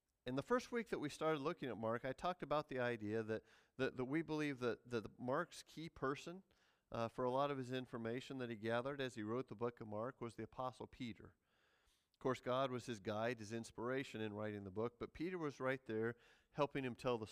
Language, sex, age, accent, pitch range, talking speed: English, male, 40-59, American, 110-135 Hz, 230 wpm